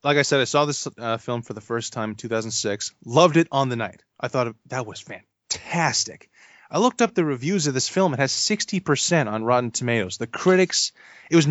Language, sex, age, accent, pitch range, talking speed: English, male, 20-39, American, 110-135 Hz, 220 wpm